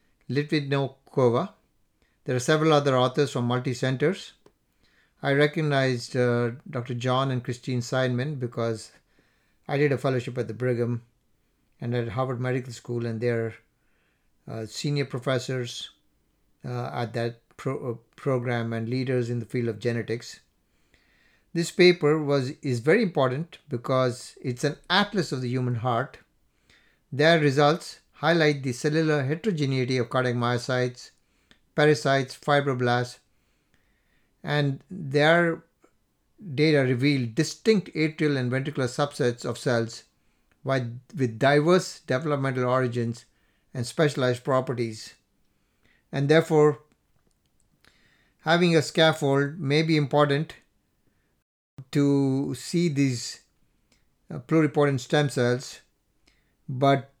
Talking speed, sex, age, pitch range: 110 wpm, male, 60-79, 120-150 Hz